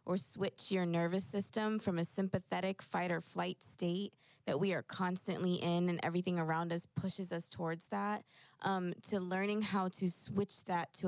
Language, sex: English, female